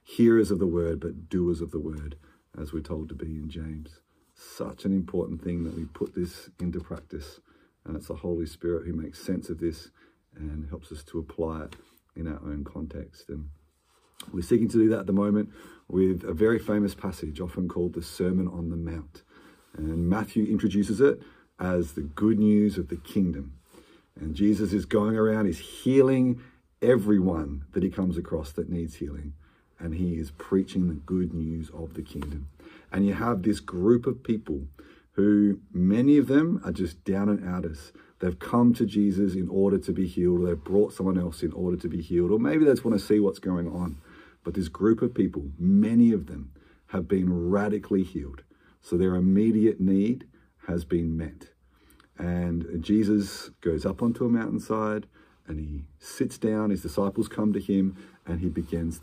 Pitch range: 80-105 Hz